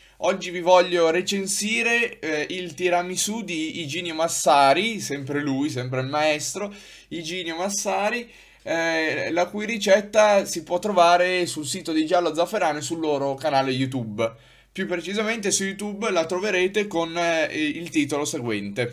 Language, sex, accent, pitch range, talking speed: Italian, male, native, 145-195 Hz, 145 wpm